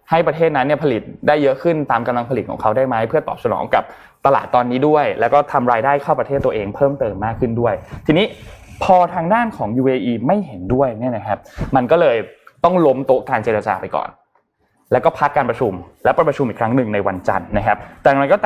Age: 20-39